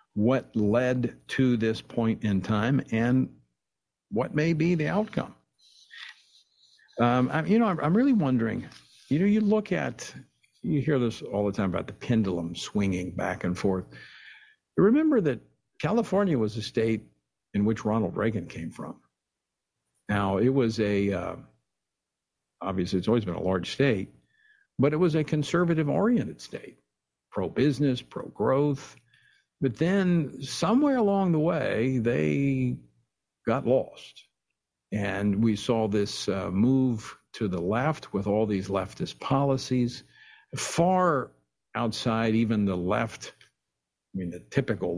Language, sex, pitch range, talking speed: English, male, 100-140 Hz, 135 wpm